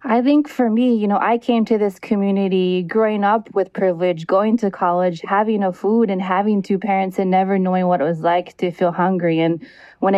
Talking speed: 220 wpm